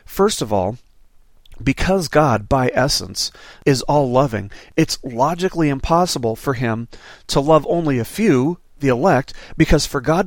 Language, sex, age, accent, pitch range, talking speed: English, male, 40-59, American, 120-150 Hz, 145 wpm